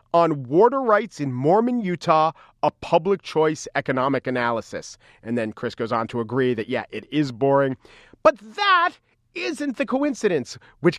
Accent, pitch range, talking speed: American, 140-220 Hz, 160 wpm